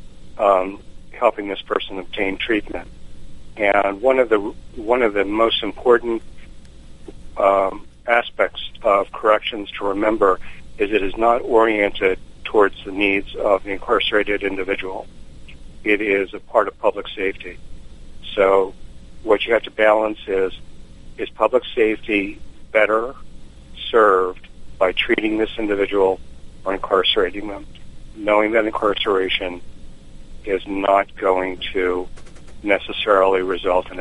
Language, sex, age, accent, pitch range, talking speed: English, male, 60-79, American, 70-105 Hz, 120 wpm